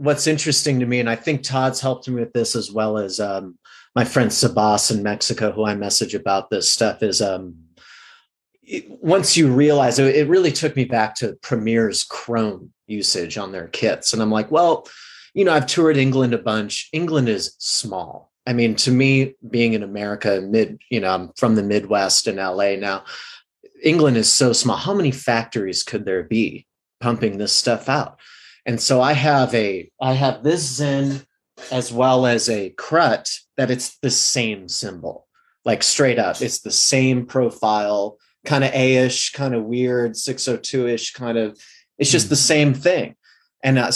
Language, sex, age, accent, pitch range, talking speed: English, male, 30-49, American, 110-135 Hz, 180 wpm